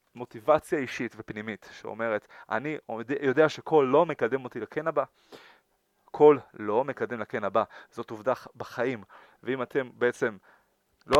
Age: 30-49